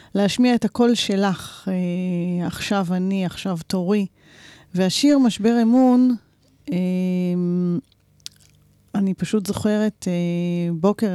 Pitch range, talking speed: 180-210 Hz, 95 wpm